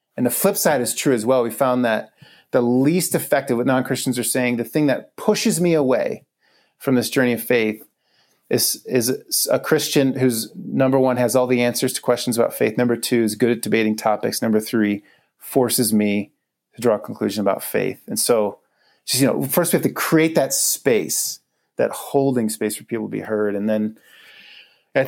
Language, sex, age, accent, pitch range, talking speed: English, male, 30-49, American, 110-130 Hz, 200 wpm